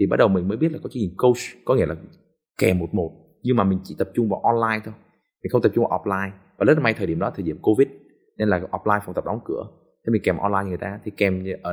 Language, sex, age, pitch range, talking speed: Vietnamese, male, 20-39, 100-155 Hz, 295 wpm